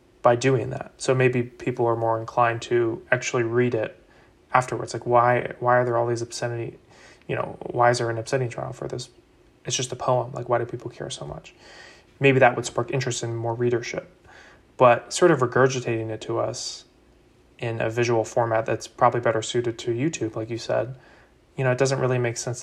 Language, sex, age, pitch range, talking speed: English, male, 20-39, 115-125 Hz, 205 wpm